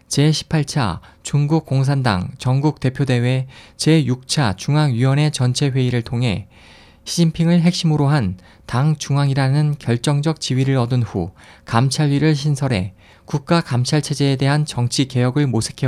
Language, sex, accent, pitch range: Korean, male, native, 115-150 Hz